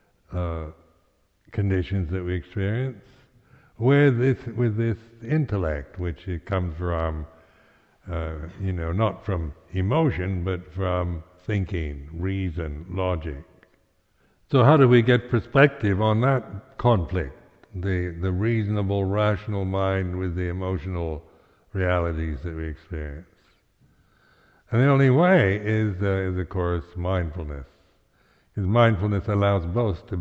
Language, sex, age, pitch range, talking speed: English, male, 60-79, 85-110 Hz, 120 wpm